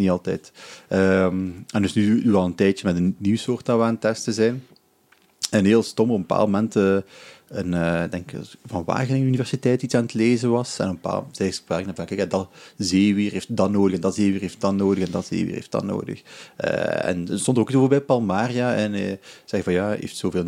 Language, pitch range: Dutch, 95-115 Hz